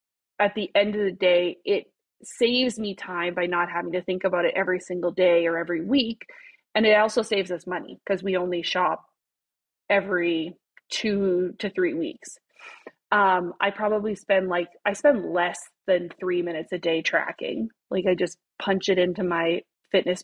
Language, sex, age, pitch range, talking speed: English, female, 20-39, 180-220 Hz, 180 wpm